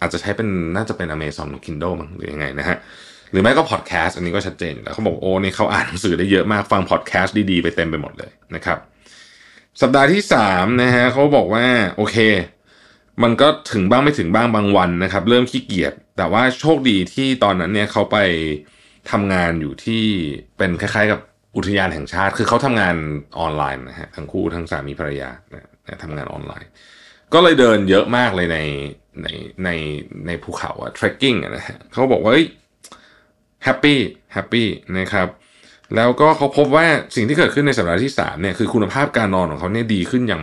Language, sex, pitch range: Thai, male, 85-115 Hz